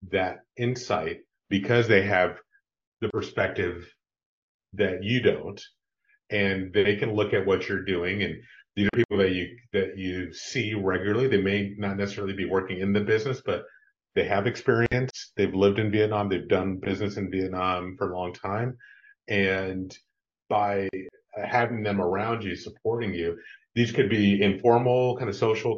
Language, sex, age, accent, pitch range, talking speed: English, male, 30-49, American, 95-115 Hz, 160 wpm